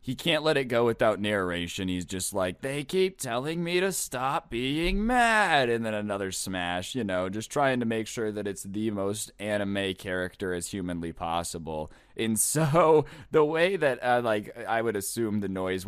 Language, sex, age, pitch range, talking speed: English, male, 20-39, 95-125 Hz, 190 wpm